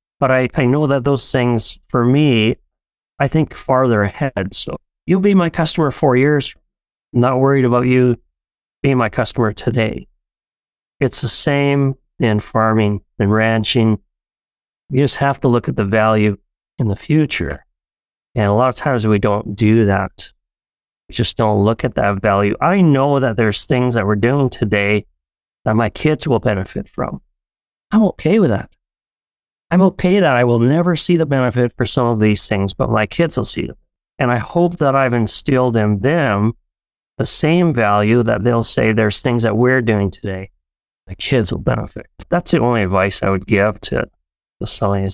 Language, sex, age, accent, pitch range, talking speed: English, male, 30-49, American, 105-140 Hz, 185 wpm